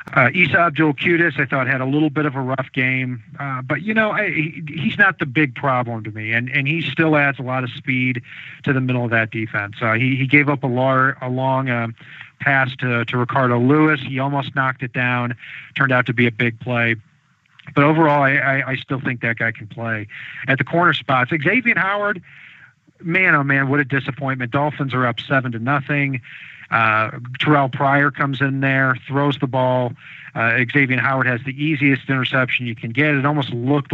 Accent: American